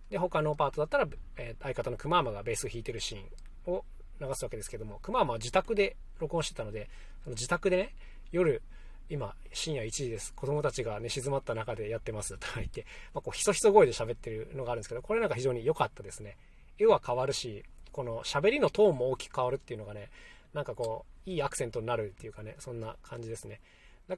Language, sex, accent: Japanese, male, native